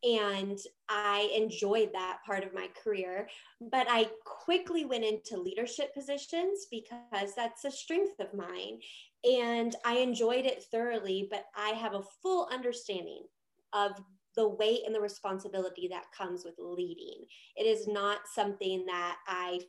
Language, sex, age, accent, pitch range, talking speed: English, female, 20-39, American, 200-255 Hz, 145 wpm